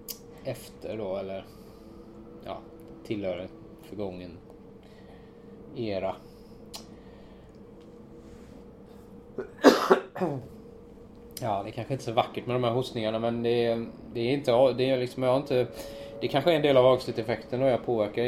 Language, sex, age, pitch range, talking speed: Swedish, male, 20-39, 100-125 Hz, 130 wpm